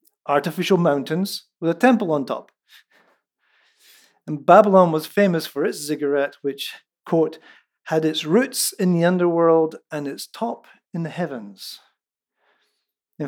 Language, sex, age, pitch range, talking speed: English, male, 50-69, 150-190 Hz, 130 wpm